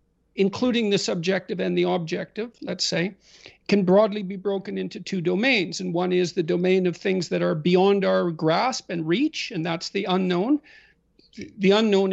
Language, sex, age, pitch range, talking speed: English, male, 50-69, 180-215 Hz, 175 wpm